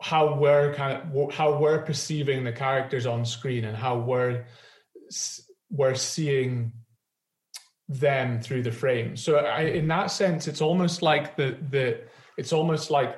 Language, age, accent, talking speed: English, 30-49, British, 150 wpm